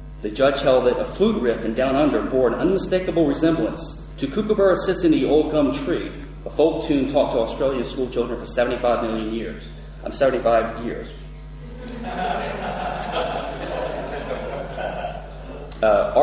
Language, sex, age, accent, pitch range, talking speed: English, male, 30-49, American, 110-155 Hz, 140 wpm